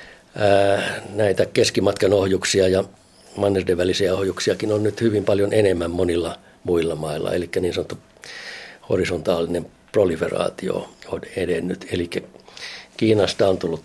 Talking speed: 110 wpm